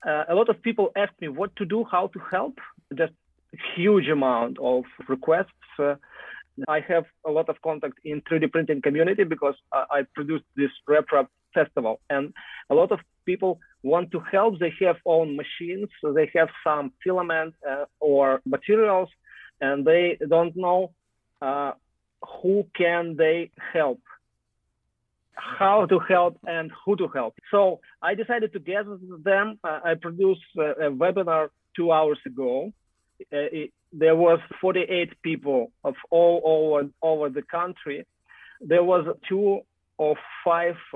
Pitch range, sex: 150-180 Hz, male